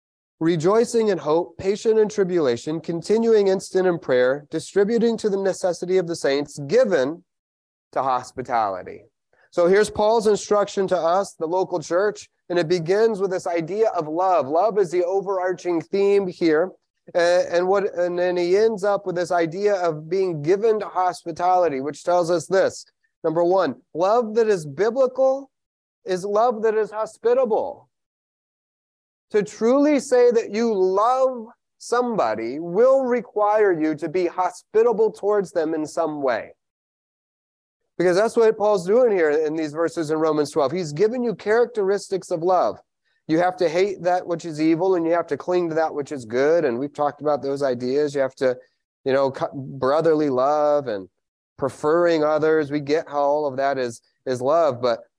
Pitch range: 155-210 Hz